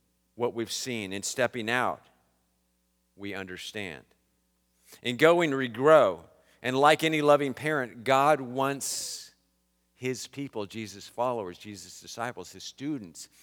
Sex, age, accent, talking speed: male, 50-69, American, 115 wpm